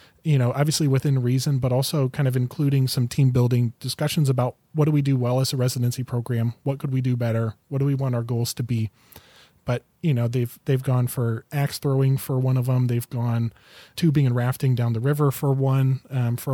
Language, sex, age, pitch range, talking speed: English, male, 30-49, 120-135 Hz, 225 wpm